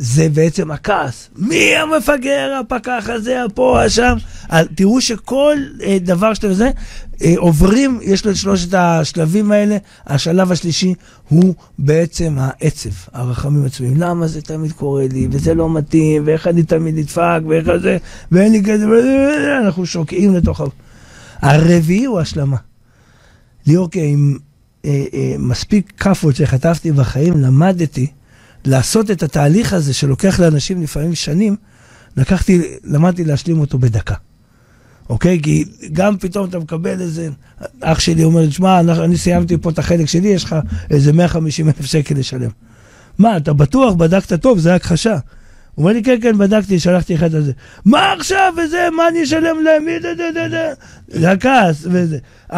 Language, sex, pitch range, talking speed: Hebrew, male, 145-205 Hz, 150 wpm